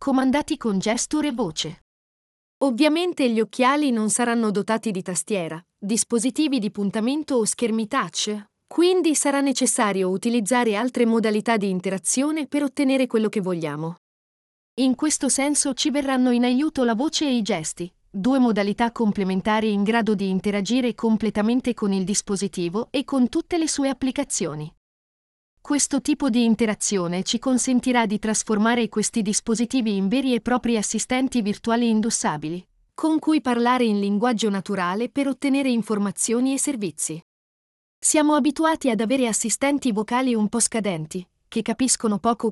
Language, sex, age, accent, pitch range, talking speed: Italian, female, 40-59, native, 205-260 Hz, 145 wpm